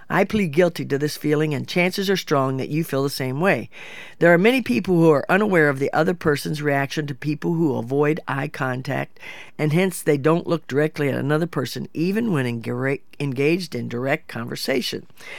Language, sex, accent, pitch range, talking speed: English, female, American, 140-180 Hz, 190 wpm